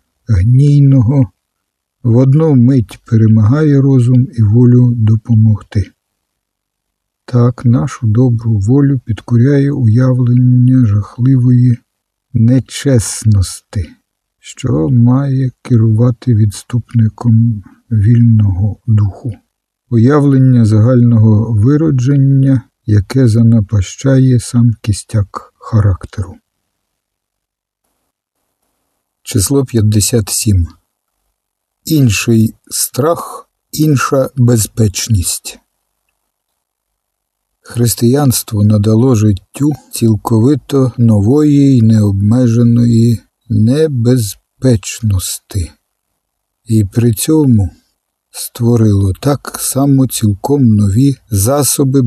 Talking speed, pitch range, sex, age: 60 wpm, 105-130 Hz, male, 50-69